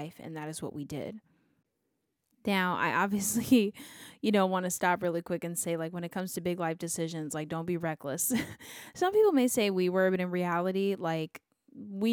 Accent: American